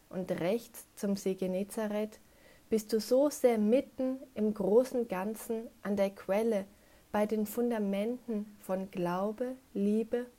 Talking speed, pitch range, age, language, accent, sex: 125 wpm, 195-230 Hz, 30-49, German, German, female